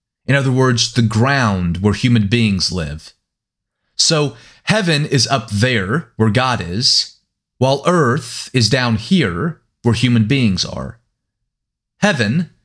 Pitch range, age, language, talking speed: 110-140 Hz, 30-49, English, 130 wpm